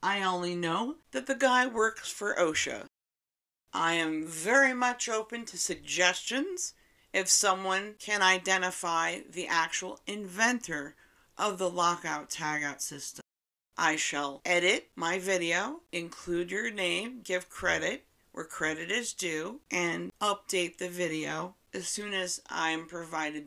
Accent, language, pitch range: American, English, 170-220 Hz